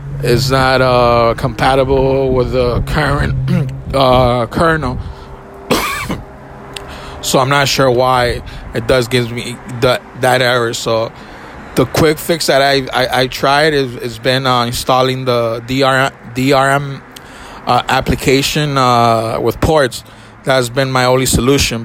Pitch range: 120-135 Hz